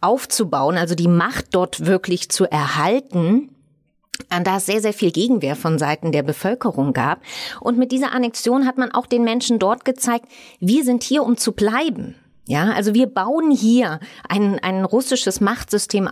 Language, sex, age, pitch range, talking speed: German, female, 30-49, 175-240 Hz, 170 wpm